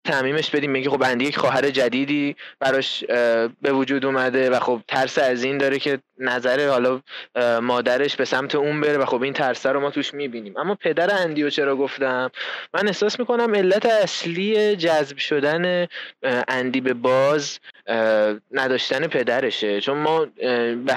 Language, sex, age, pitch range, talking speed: Persian, male, 20-39, 130-160 Hz, 155 wpm